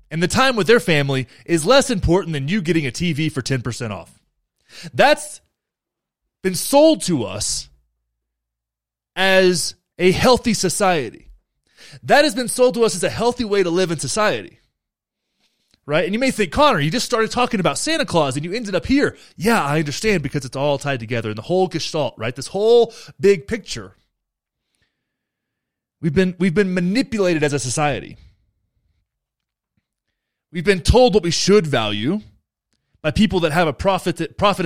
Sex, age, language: male, 30-49, English